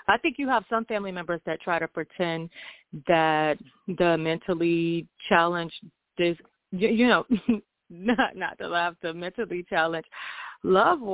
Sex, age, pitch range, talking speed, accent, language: female, 30-49, 160-200 Hz, 140 wpm, American, English